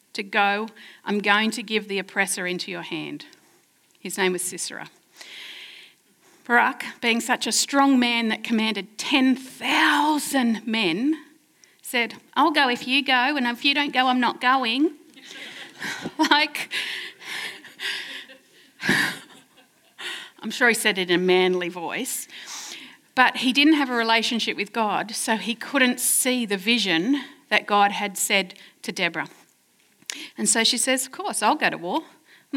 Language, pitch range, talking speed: English, 195-285 Hz, 145 wpm